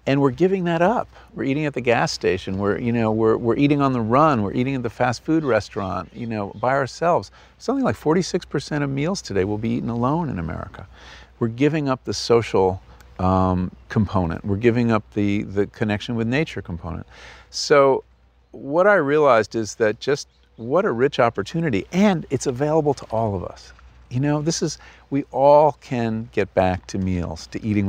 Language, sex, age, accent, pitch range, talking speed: English, male, 50-69, American, 90-135 Hz, 195 wpm